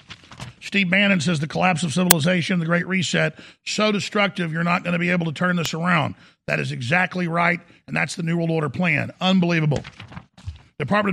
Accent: American